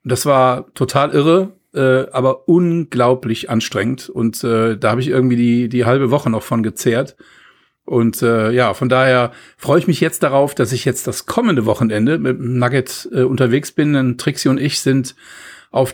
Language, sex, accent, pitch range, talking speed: German, male, German, 125-150 Hz, 185 wpm